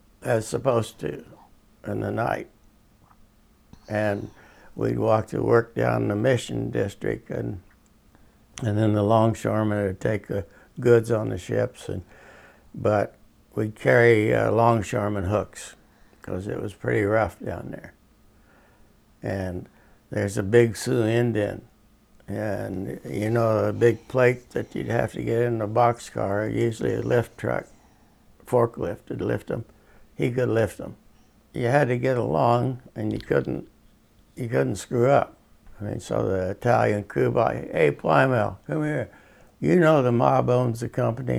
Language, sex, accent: English, male, American